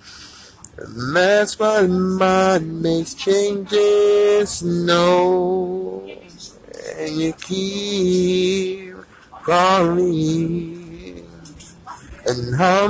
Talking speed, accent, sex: 60 wpm, American, male